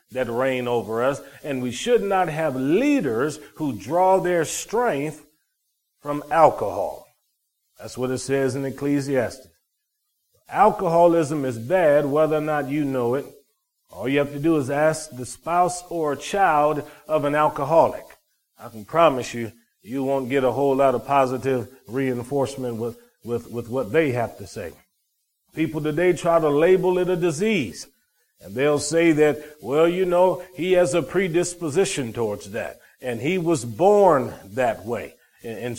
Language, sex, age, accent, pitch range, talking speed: English, male, 40-59, American, 135-180 Hz, 160 wpm